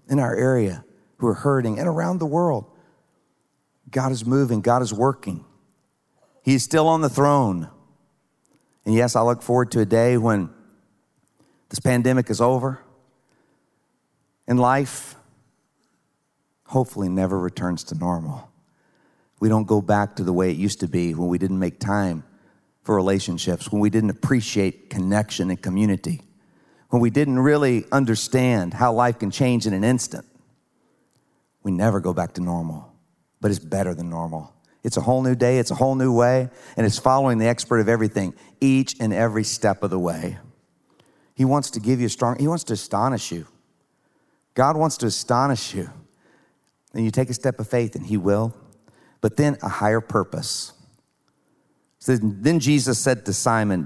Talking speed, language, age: 170 wpm, English, 50-69